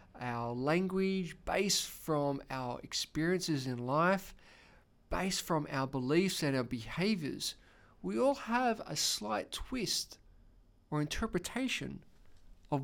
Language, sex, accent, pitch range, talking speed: English, male, Australian, 145-195 Hz, 110 wpm